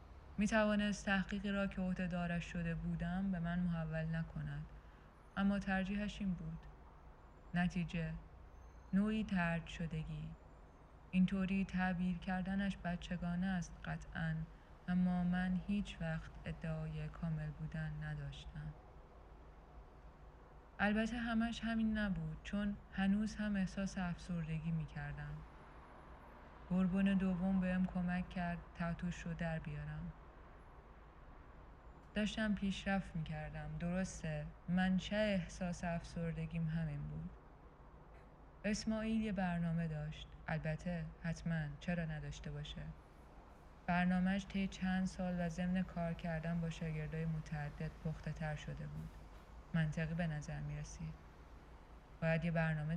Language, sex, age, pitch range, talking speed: Persian, female, 20-39, 155-185 Hz, 105 wpm